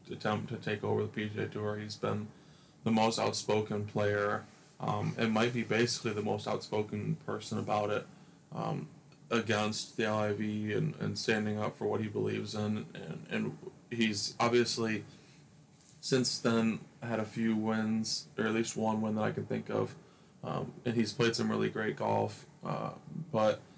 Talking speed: 175 wpm